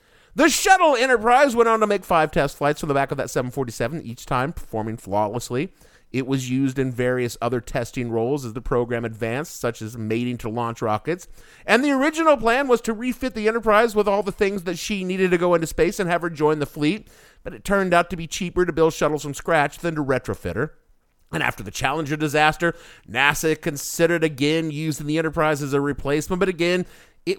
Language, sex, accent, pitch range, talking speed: English, male, American, 130-190 Hz, 215 wpm